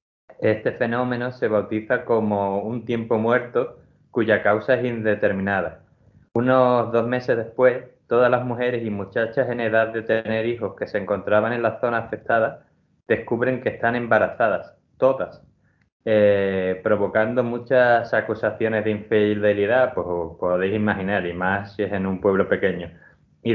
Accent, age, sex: Spanish, 20-39, male